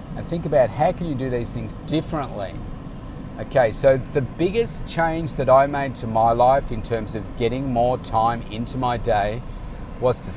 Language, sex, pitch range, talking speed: English, male, 115-145 Hz, 185 wpm